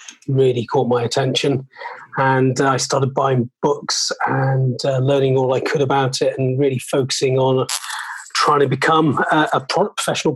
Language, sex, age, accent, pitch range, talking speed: English, male, 30-49, British, 130-140 Hz, 170 wpm